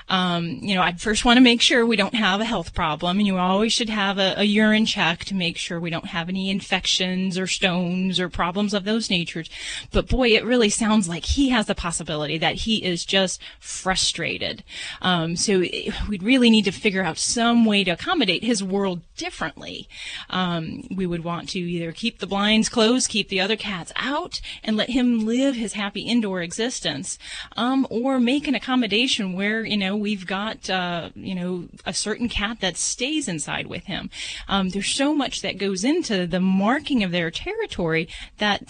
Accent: American